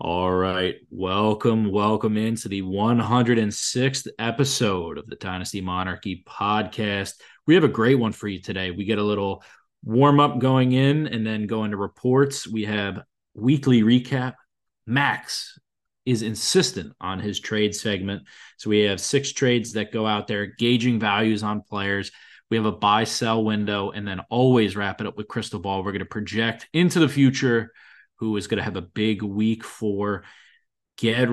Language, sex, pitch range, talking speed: English, male, 100-120 Hz, 170 wpm